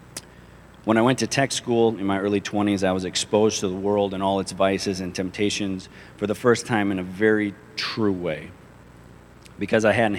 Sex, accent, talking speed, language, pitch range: male, American, 200 wpm, English, 90-110 Hz